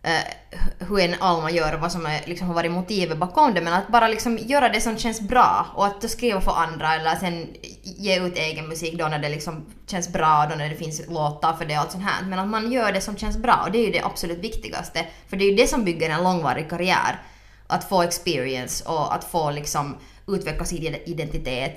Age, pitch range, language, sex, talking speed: 20-39, 160-215 Hz, Swedish, female, 240 wpm